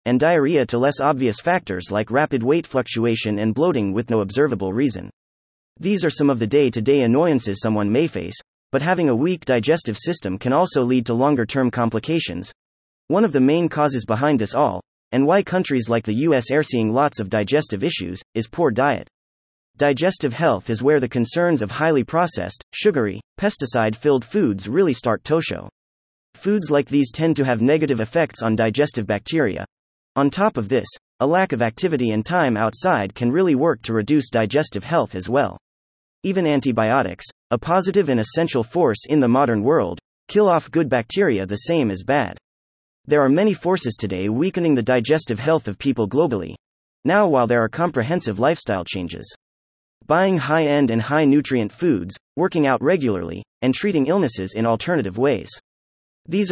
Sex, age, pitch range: male, 30-49, 110-155 Hz